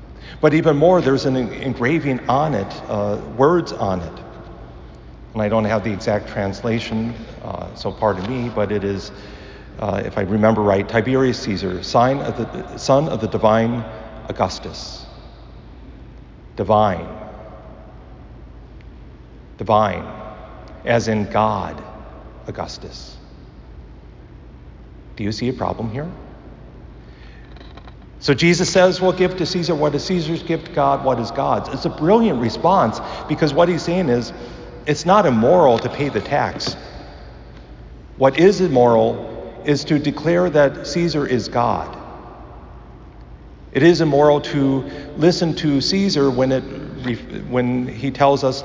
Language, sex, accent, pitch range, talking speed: English, male, American, 100-140 Hz, 130 wpm